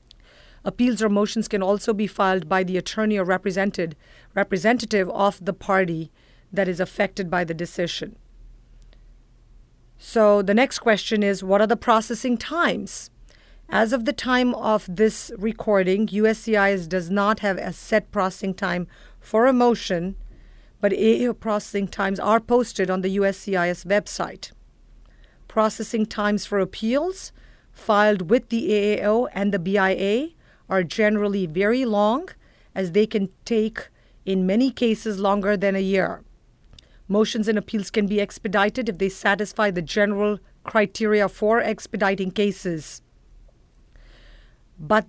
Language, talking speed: English, 135 wpm